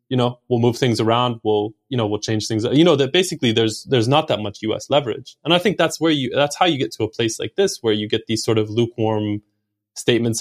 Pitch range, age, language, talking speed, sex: 110-130 Hz, 20-39, English, 265 wpm, male